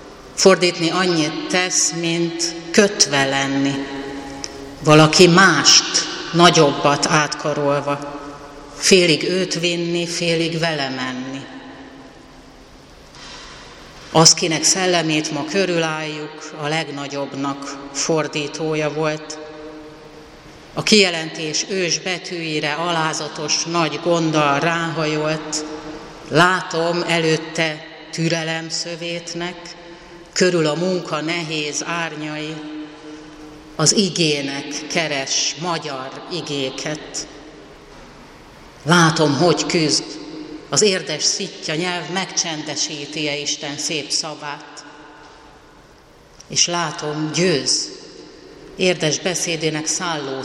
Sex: female